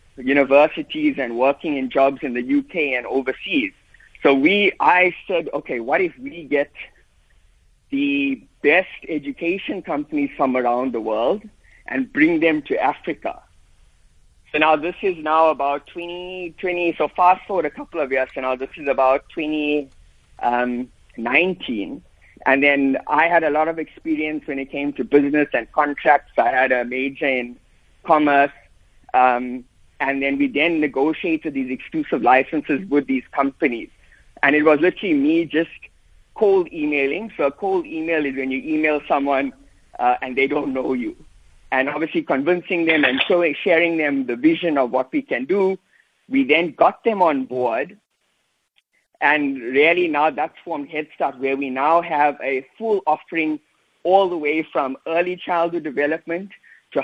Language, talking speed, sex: English, 160 wpm, male